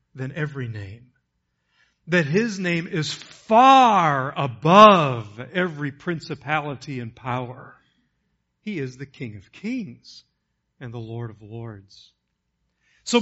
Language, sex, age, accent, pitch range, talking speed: English, male, 50-69, American, 130-190 Hz, 115 wpm